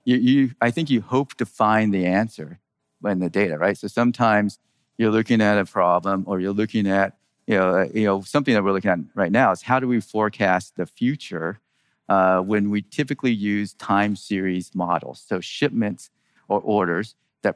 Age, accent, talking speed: 40-59, American, 190 wpm